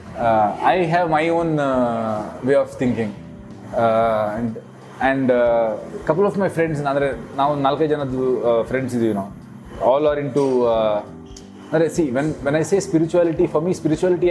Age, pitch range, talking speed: 20-39, 125-165 Hz, 170 wpm